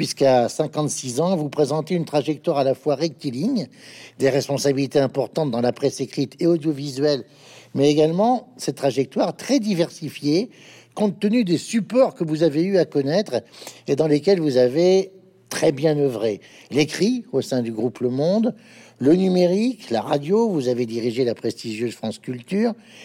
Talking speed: 160 wpm